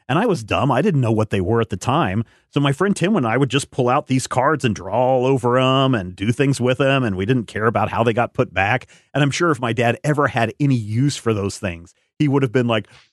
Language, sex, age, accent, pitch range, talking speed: English, male, 40-59, American, 100-125 Hz, 290 wpm